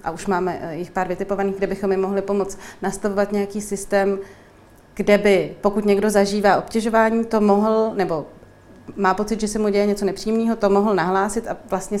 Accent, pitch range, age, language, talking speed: native, 185-200 Hz, 30-49, Czech, 180 wpm